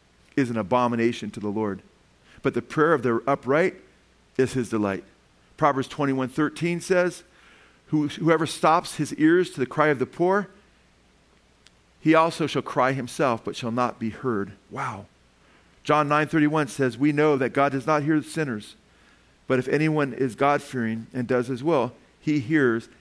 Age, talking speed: 40-59, 160 wpm